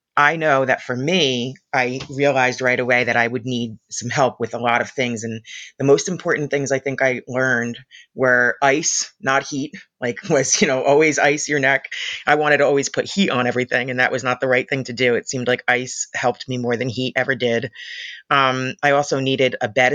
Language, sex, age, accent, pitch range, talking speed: English, female, 30-49, American, 125-150 Hz, 225 wpm